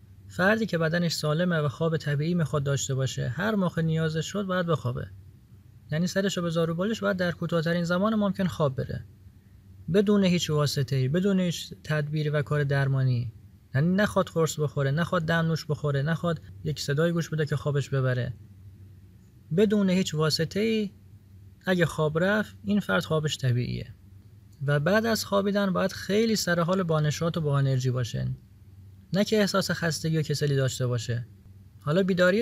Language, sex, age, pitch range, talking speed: Persian, male, 30-49, 125-180 Hz, 155 wpm